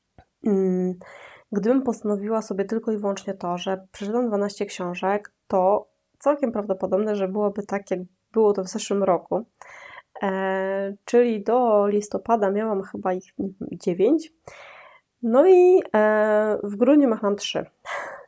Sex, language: female, Polish